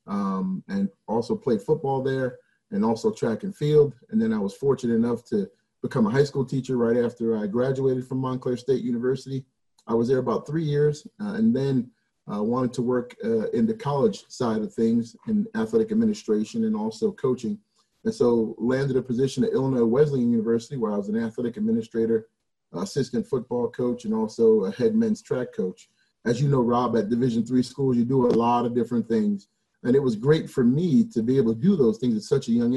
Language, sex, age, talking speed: English, male, 30-49, 210 wpm